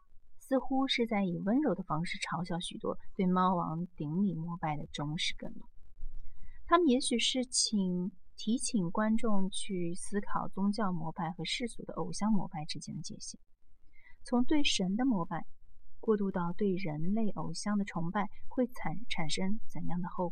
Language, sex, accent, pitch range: Chinese, female, native, 155-215 Hz